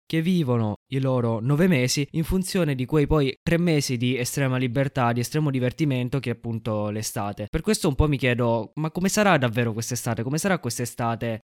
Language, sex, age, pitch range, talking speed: Italian, male, 20-39, 115-145 Hz, 190 wpm